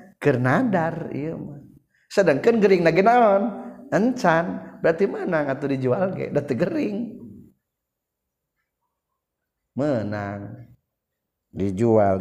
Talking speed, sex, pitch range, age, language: 90 wpm, male, 120-145 Hz, 40-59, Indonesian